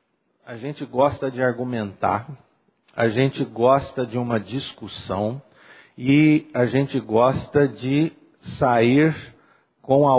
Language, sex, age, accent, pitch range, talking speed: Portuguese, male, 50-69, Brazilian, 125-160 Hz, 110 wpm